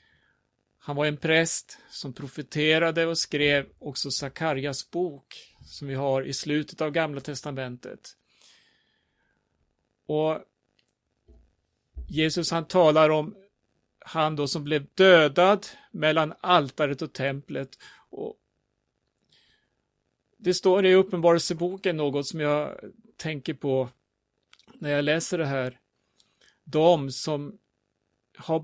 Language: Swedish